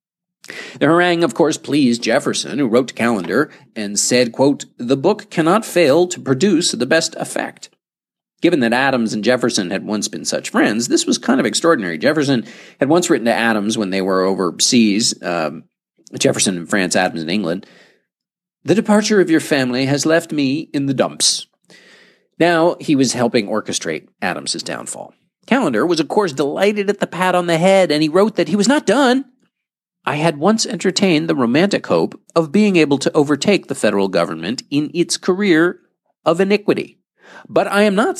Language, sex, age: English, male, 40-59